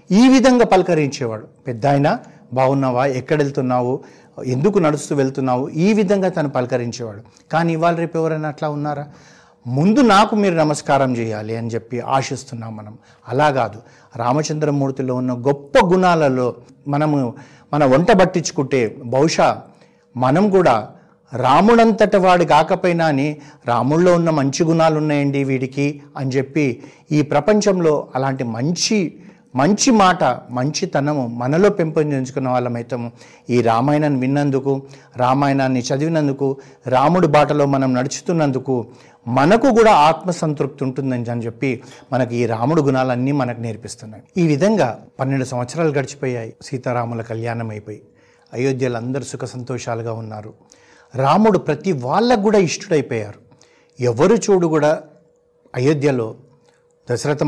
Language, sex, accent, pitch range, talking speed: Telugu, male, native, 125-160 Hz, 110 wpm